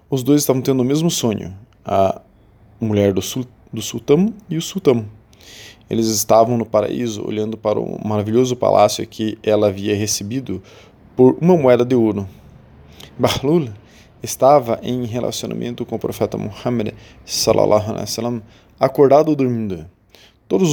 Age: 20-39